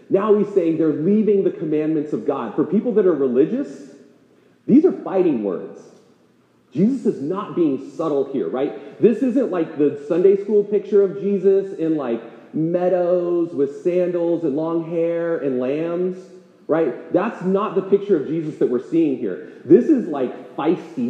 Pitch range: 120-200 Hz